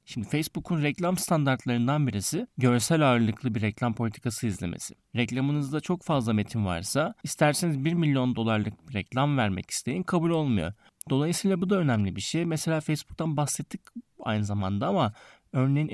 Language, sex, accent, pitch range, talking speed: Turkish, male, native, 110-150 Hz, 145 wpm